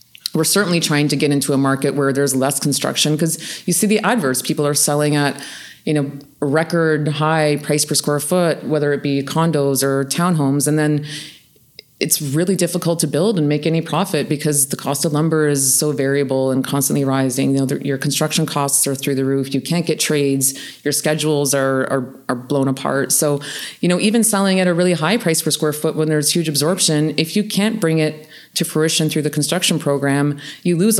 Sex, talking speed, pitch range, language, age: female, 210 wpm, 135-160 Hz, English, 30-49